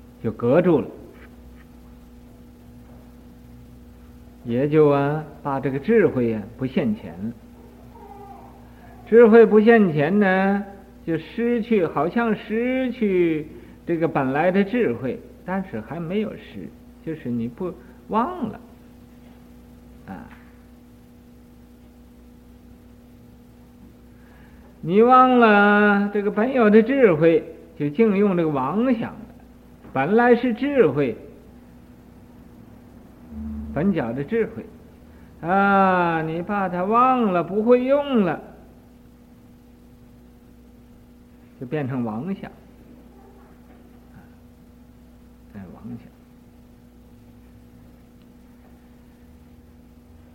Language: Chinese